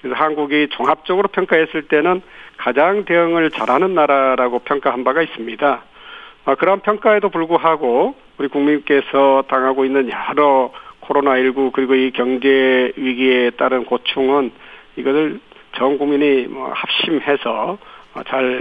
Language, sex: Korean, male